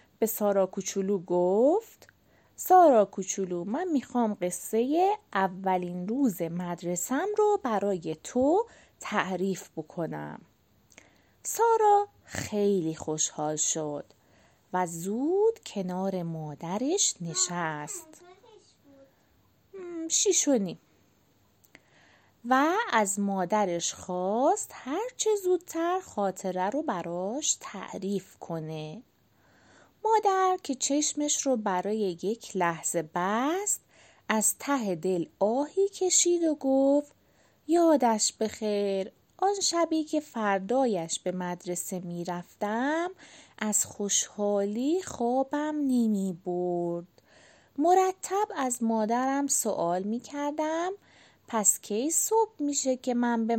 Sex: female